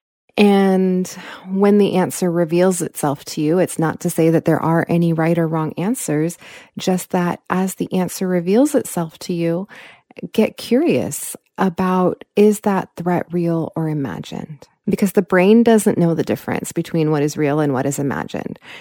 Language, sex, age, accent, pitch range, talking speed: English, female, 20-39, American, 160-190 Hz, 170 wpm